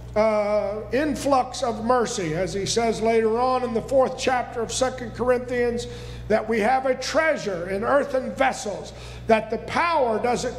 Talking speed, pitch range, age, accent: 160 wpm, 230-285 Hz, 50-69, American